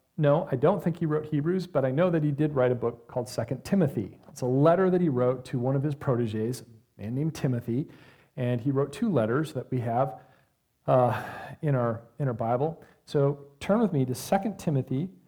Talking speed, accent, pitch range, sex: 215 wpm, American, 135-185 Hz, male